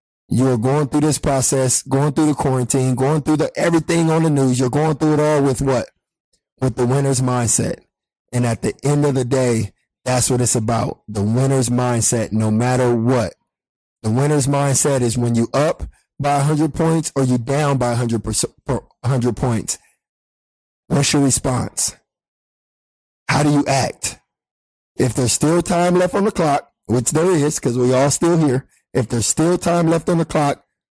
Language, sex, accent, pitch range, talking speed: English, male, American, 125-145 Hz, 175 wpm